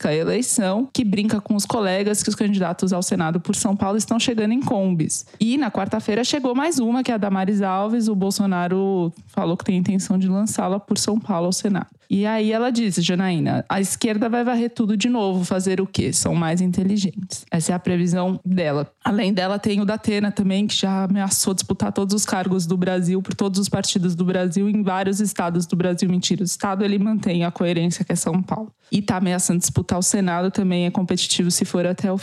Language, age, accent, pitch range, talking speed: Portuguese, 20-39, Brazilian, 180-210 Hz, 220 wpm